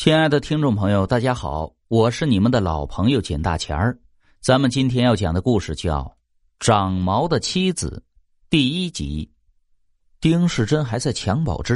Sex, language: male, Chinese